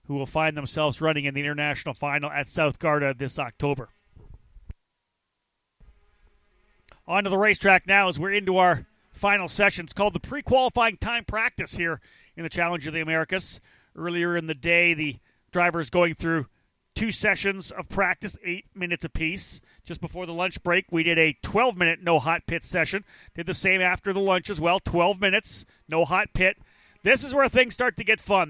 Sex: male